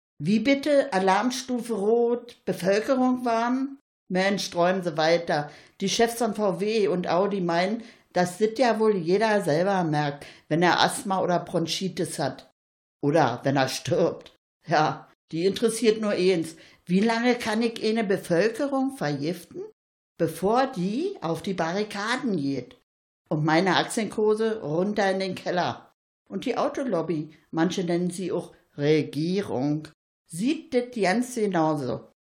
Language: German